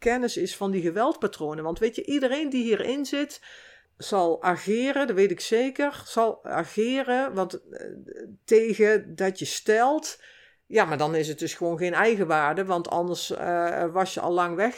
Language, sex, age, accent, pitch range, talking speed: Dutch, female, 60-79, Dutch, 170-230 Hz, 175 wpm